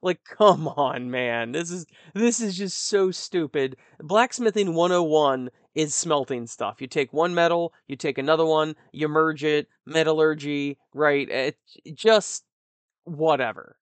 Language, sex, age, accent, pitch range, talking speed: English, male, 20-39, American, 135-175 Hz, 145 wpm